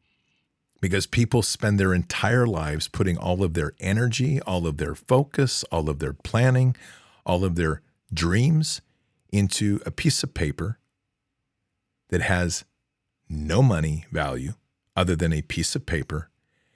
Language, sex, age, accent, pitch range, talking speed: English, male, 50-69, American, 85-105 Hz, 140 wpm